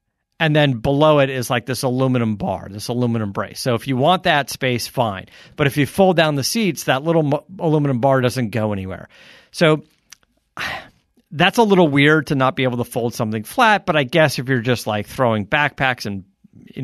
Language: English